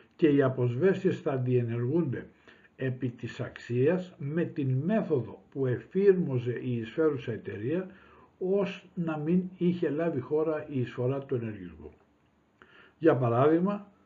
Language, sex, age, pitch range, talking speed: Greek, male, 60-79, 120-160 Hz, 120 wpm